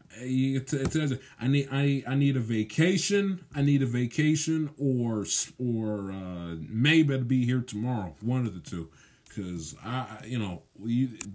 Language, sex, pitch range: English, male, 115-140 Hz